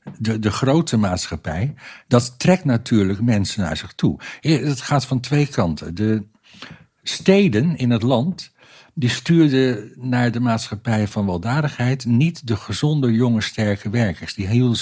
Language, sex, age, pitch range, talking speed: Dutch, male, 60-79, 105-140 Hz, 145 wpm